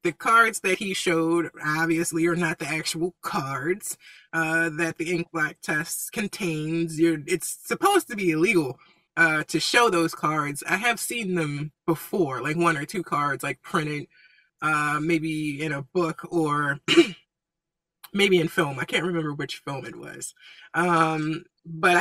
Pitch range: 165-200 Hz